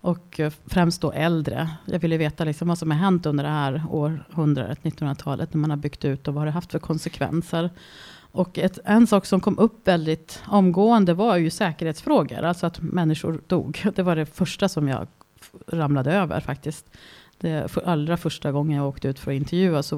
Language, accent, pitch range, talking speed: Swedish, native, 150-180 Hz, 190 wpm